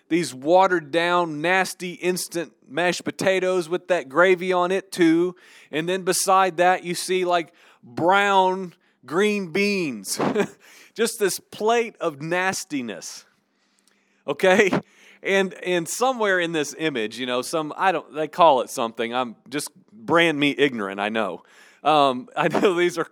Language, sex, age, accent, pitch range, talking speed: English, male, 40-59, American, 150-195 Hz, 145 wpm